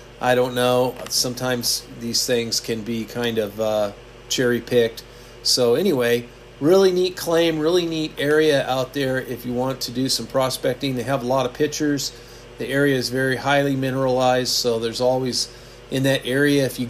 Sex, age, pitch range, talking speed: male, 40-59, 125-180 Hz, 175 wpm